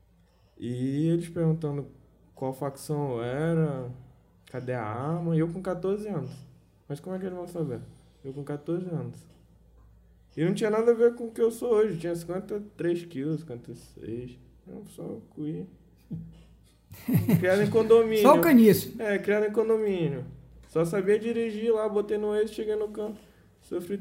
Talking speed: 160 wpm